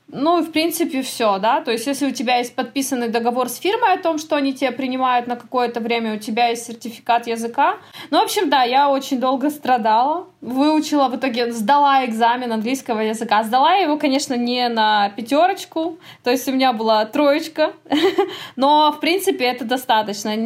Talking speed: 180 wpm